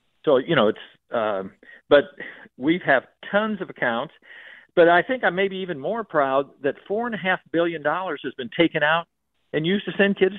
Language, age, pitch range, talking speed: English, 60-79, 135-200 Hz, 200 wpm